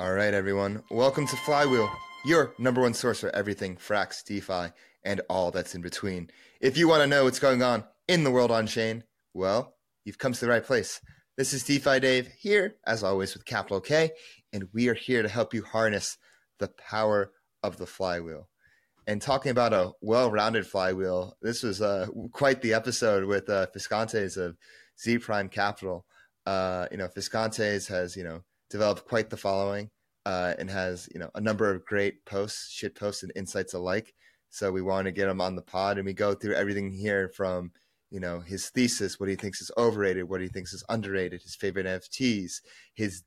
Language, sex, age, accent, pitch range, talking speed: English, male, 30-49, American, 95-120 Hz, 195 wpm